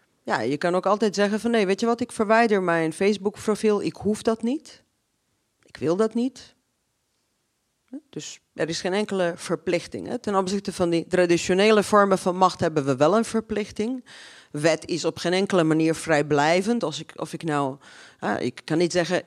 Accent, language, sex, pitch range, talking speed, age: Dutch, Dutch, female, 155-215 Hz, 170 wpm, 40-59